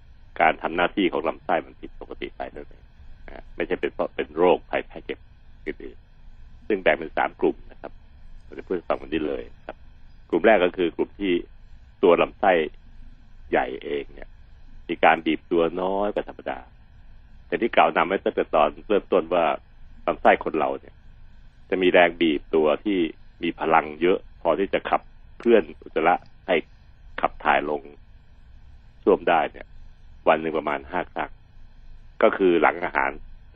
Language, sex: Thai, male